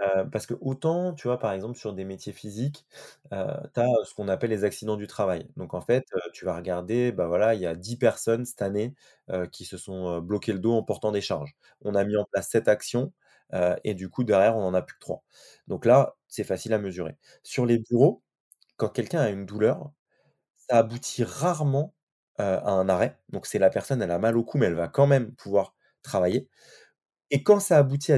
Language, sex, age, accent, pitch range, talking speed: French, male, 20-39, French, 105-140 Hz, 230 wpm